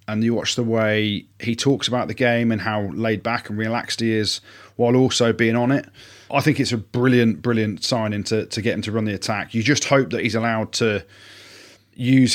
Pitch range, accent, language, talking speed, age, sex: 105-120 Hz, British, English, 225 wpm, 30-49, male